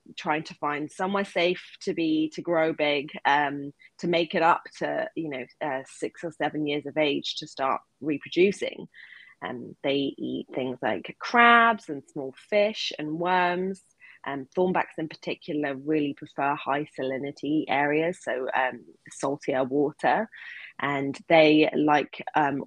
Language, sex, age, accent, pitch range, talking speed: English, female, 20-39, British, 140-170 Hz, 155 wpm